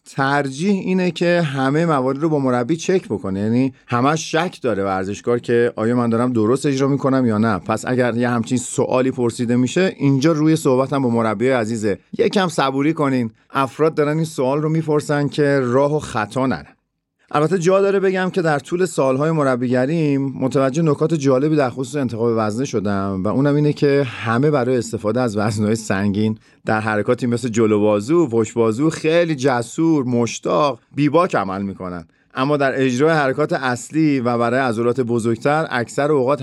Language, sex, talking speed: Persian, male, 170 wpm